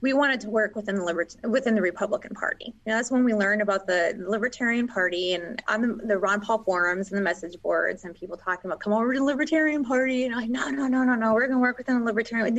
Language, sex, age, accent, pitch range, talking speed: English, female, 20-39, American, 200-255 Hz, 270 wpm